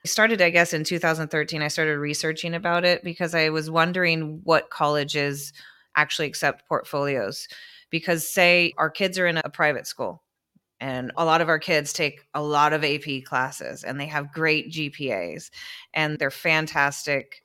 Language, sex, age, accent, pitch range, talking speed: English, female, 30-49, American, 145-165 Hz, 170 wpm